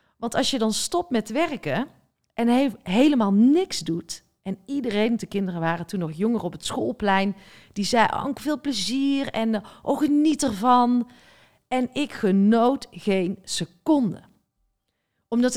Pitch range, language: 185-255 Hz, Dutch